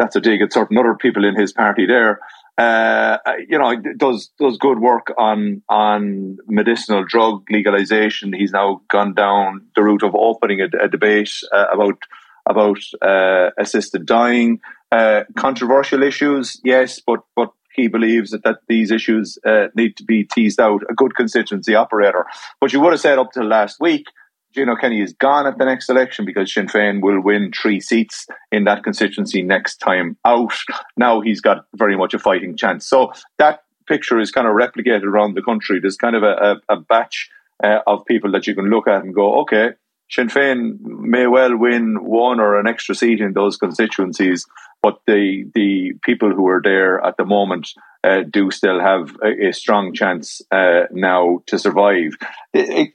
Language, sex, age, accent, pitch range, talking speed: English, male, 30-49, Irish, 100-125 Hz, 185 wpm